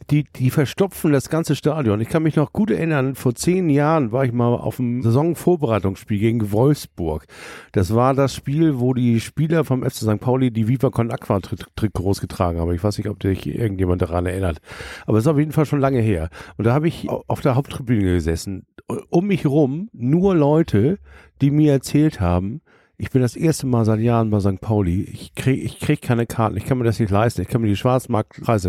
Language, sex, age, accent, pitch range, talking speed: German, male, 50-69, German, 100-140 Hz, 210 wpm